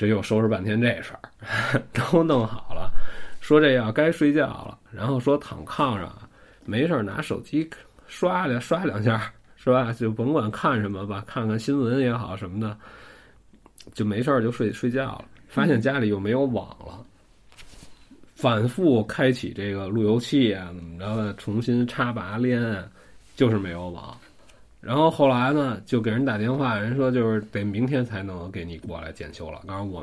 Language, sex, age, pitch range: Chinese, male, 20-39, 100-130 Hz